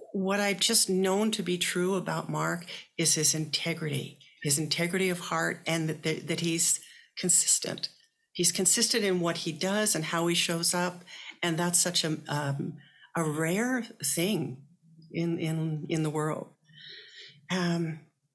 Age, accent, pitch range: 60-79, American, 150-185 Hz